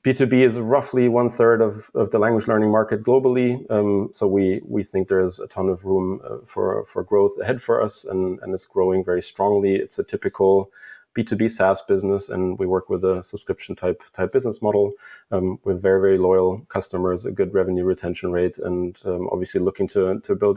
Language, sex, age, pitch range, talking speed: English, male, 30-49, 95-105 Hz, 200 wpm